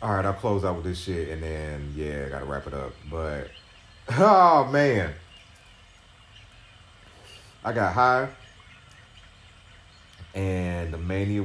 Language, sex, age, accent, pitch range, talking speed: English, male, 30-49, American, 85-105 Hz, 125 wpm